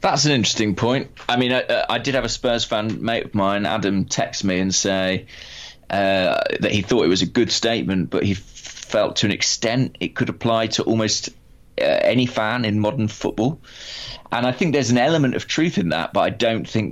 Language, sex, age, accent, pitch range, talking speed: English, male, 20-39, British, 95-115 Hz, 215 wpm